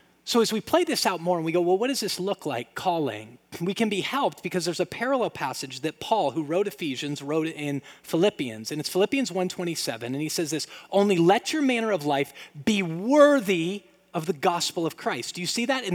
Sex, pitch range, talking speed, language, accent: male, 160-230 Hz, 225 wpm, English, American